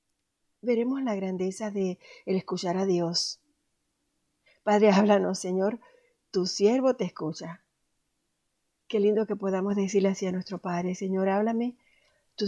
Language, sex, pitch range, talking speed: Spanish, female, 185-210 Hz, 130 wpm